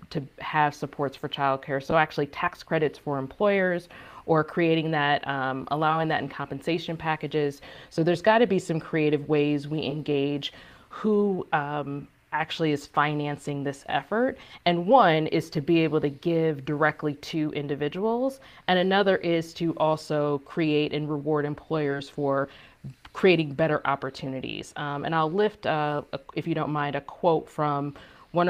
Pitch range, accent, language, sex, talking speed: 145-165 Hz, American, English, female, 155 wpm